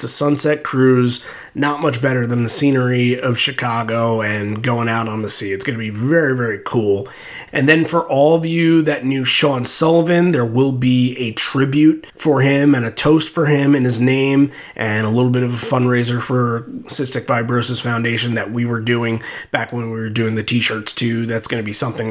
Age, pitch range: 30-49, 115-140 Hz